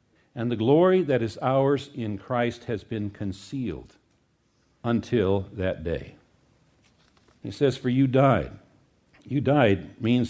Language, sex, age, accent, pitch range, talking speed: English, male, 50-69, American, 105-130 Hz, 130 wpm